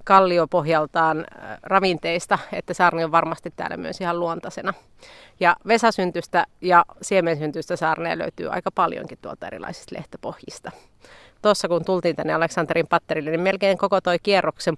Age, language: 30-49, Finnish